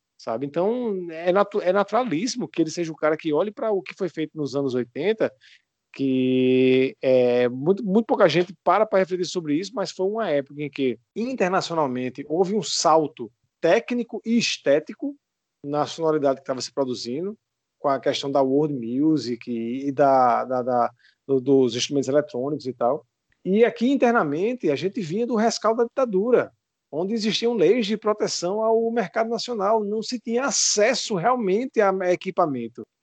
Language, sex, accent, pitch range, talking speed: Portuguese, male, Brazilian, 140-225 Hz, 170 wpm